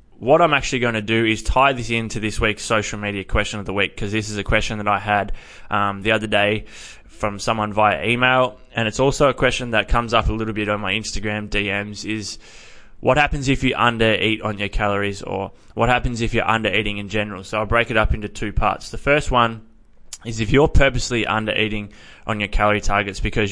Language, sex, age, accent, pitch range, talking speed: English, male, 20-39, Australian, 105-115 Hz, 225 wpm